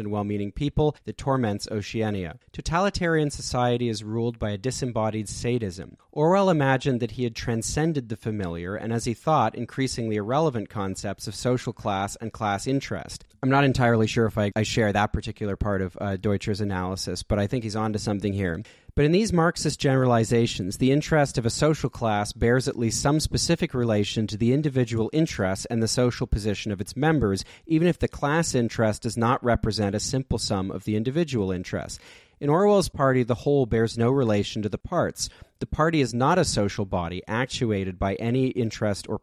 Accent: American